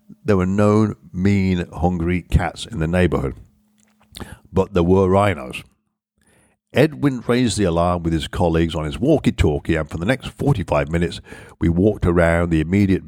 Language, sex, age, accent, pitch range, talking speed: English, male, 60-79, British, 80-100 Hz, 155 wpm